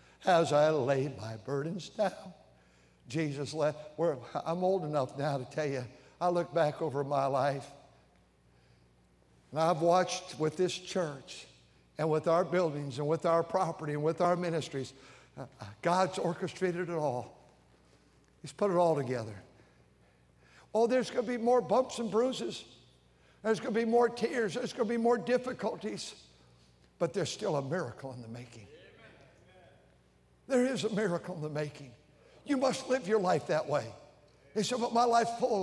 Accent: American